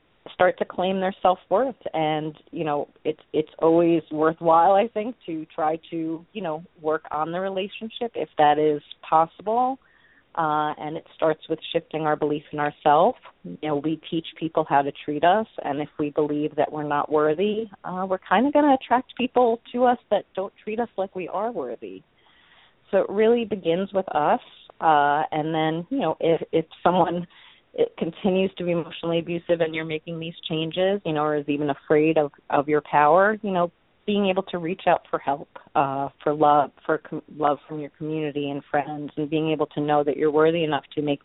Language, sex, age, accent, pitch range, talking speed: English, female, 30-49, American, 150-180 Hz, 200 wpm